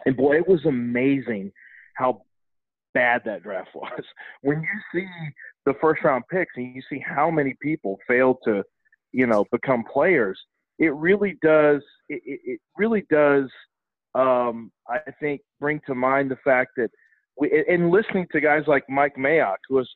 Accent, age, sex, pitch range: American, 40-59, male, 135-175 Hz